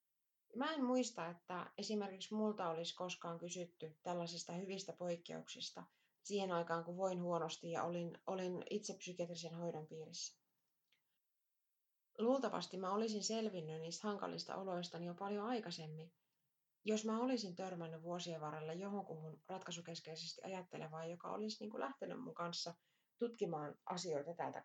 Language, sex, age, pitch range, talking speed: Finnish, female, 30-49, 170-215 Hz, 130 wpm